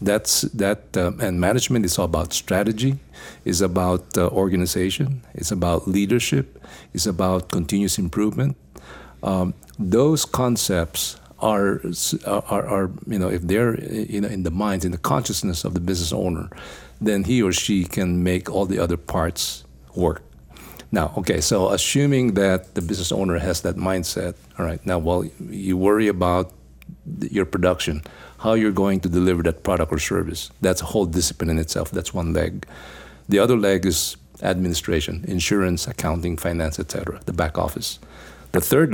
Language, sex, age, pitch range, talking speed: English, male, 50-69, 80-100 Hz, 165 wpm